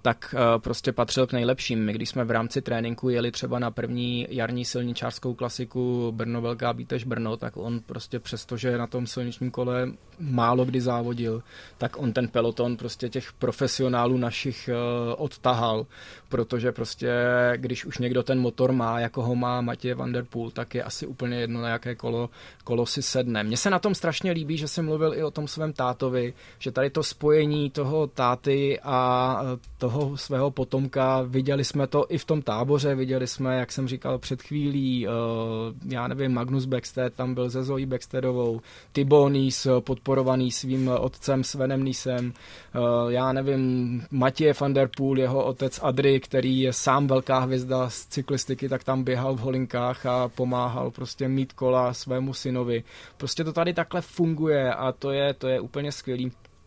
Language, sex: Czech, male